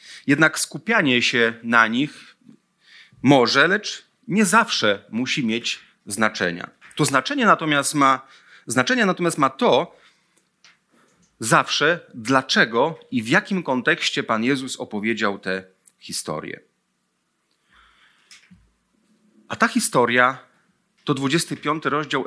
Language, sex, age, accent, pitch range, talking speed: Polish, male, 30-49, native, 125-190 Hz, 95 wpm